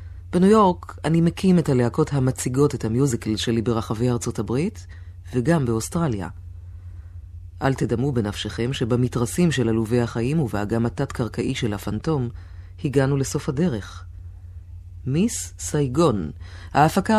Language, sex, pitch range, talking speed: Hebrew, female, 90-140 Hz, 110 wpm